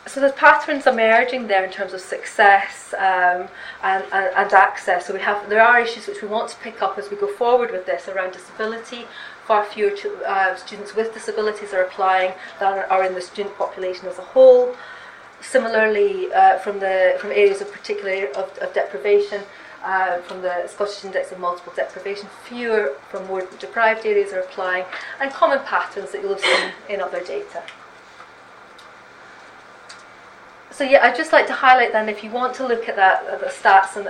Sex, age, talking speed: female, 30-49, 190 wpm